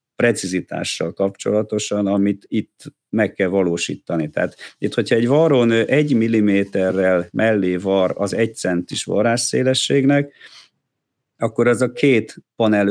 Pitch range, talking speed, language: 90-115 Hz, 115 wpm, Hungarian